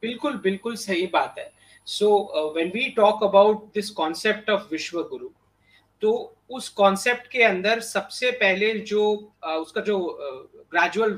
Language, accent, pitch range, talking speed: English, Indian, 195-235 Hz, 105 wpm